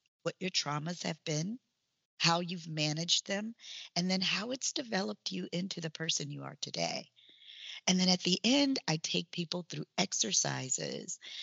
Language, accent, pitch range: English, American, 155-200 Hz